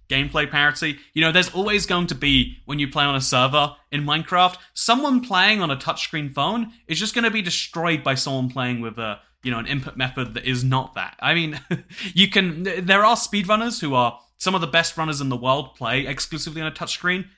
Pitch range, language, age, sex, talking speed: 135-190 Hz, English, 20-39, male, 225 wpm